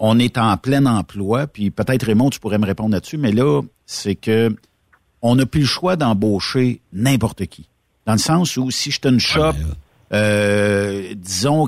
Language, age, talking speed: French, 60-79, 180 wpm